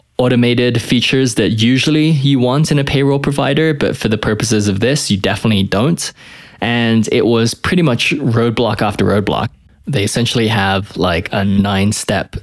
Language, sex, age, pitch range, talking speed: English, male, 20-39, 95-115 Hz, 160 wpm